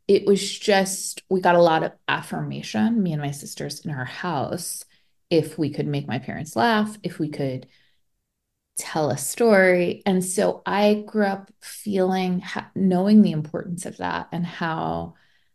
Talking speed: 160 wpm